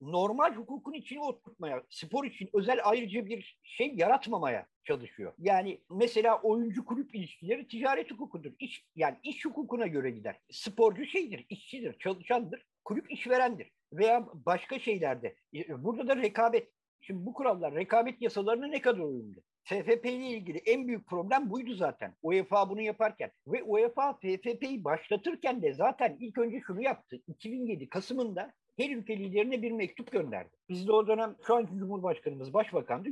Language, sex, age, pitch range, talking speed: Turkish, male, 50-69, 195-255 Hz, 145 wpm